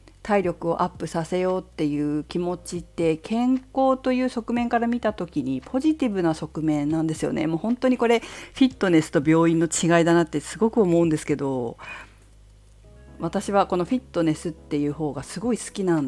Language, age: Japanese, 50-69